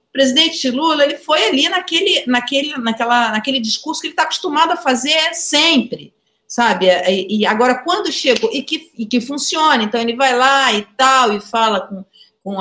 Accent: Brazilian